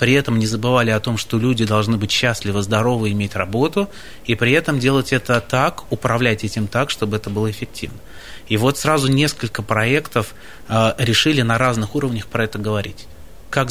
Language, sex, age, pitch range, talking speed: Russian, male, 20-39, 105-130 Hz, 180 wpm